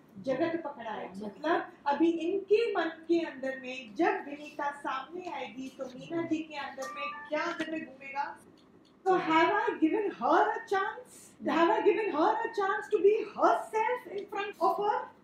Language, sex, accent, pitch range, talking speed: Hindi, female, native, 295-395 Hz, 65 wpm